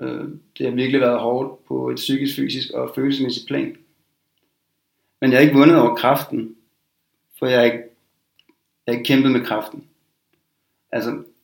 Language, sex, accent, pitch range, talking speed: Danish, male, native, 115-125 Hz, 165 wpm